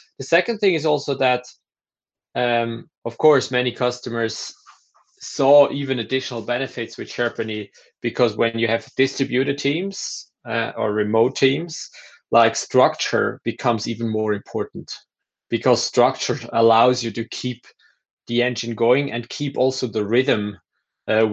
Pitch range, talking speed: 110-125 Hz, 135 wpm